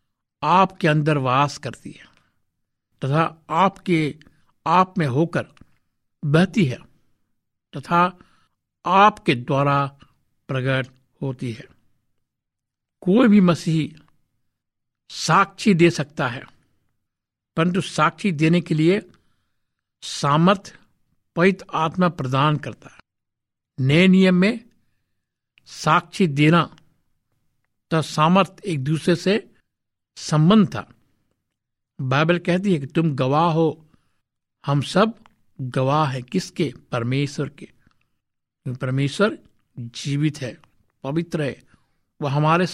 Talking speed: 95 wpm